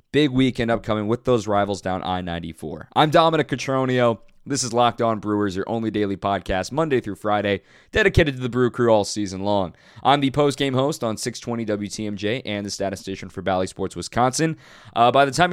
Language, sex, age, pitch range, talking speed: English, male, 20-39, 100-135 Hz, 190 wpm